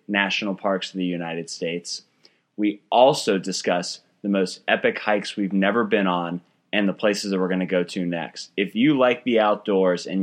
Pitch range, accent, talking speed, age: 100-155 Hz, American, 195 wpm, 20-39